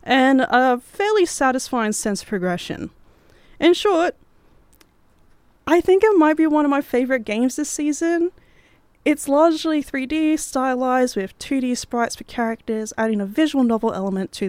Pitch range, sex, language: 195-310 Hz, female, English